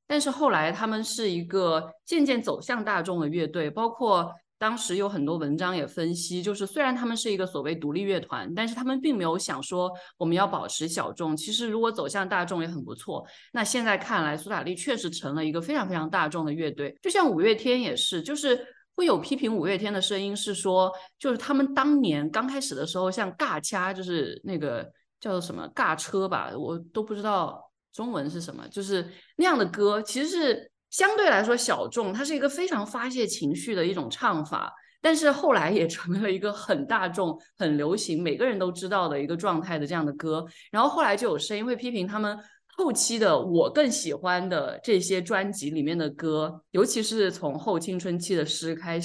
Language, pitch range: Chinese, 165-240 Hz